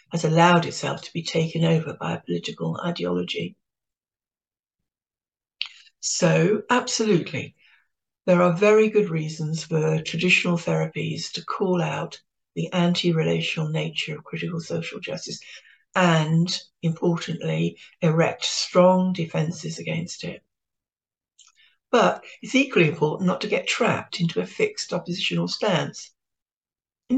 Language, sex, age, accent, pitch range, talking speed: English, female, 60-79, British, 160-190 Hz, 115 wpm